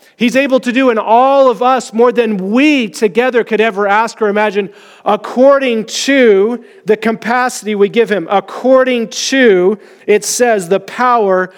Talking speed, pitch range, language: 155 wpm, 190-230 Hz, English